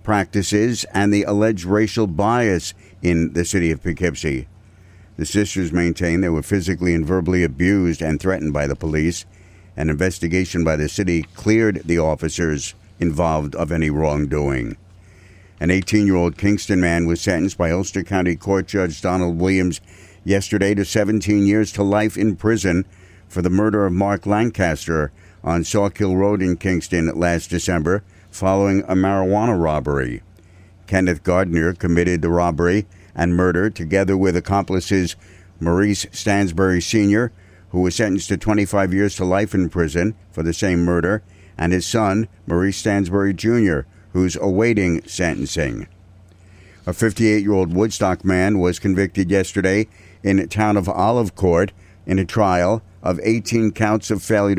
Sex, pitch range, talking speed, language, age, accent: male, 90-100 Hz, 145 wpm, English, 60-79, American